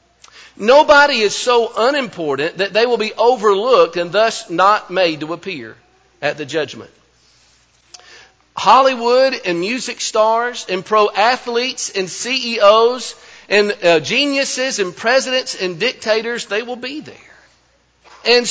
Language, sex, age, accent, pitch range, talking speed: English, male, 50-69, American, 190-235 Hz, 125 wpm